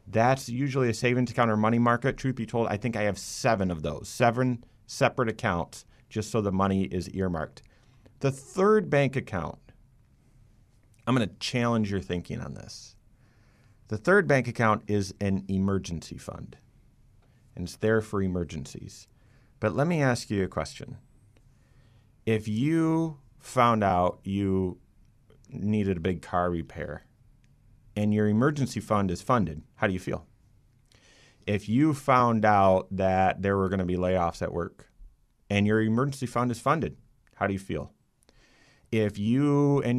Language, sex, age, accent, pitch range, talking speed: English, male, 30-49, American, 100-130 Hz, 155 wpm